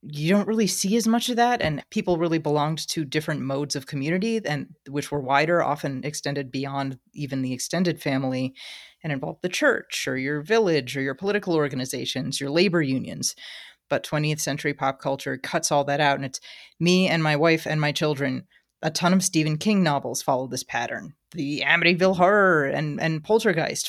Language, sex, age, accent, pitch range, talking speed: English, female, 30-49, American, 140-170 Hz, 185 wpm